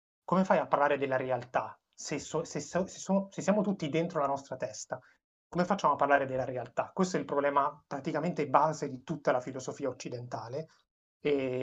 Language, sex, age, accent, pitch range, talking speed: Italian, male, 30-49, native, 140-160 Hz, 190 wpm